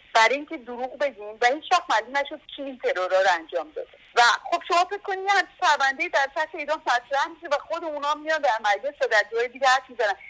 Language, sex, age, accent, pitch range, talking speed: English, female, 50-69, Indian, 215-320 Hz, 190 wpm